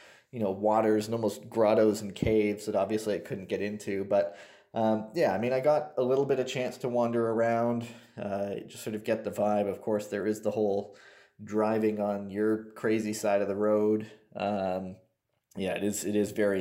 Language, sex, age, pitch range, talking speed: English, male, 20-39, 100-115 Hz, 205 wpm